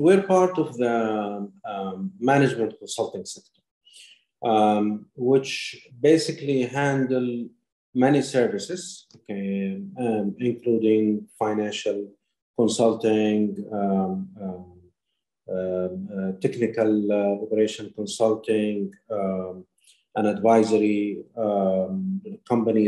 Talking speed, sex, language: 80 wpm, male, English